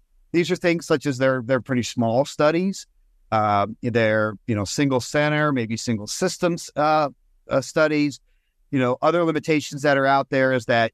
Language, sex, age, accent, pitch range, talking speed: English, male, 50-69, American, 115-145 Hz, 175 wpm